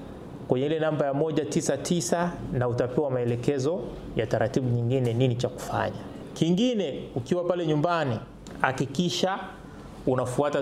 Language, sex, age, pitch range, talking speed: Swahili, male, 30-49, 125-150 Hz, 120 wpm